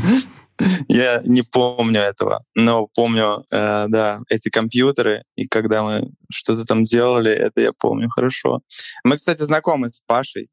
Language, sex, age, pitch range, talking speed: Russian, male, 20-39, 110-135 Hz, 140 wpm